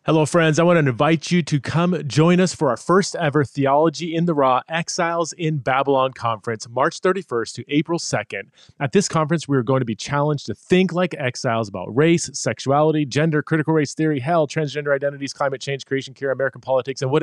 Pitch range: 115-150 Hz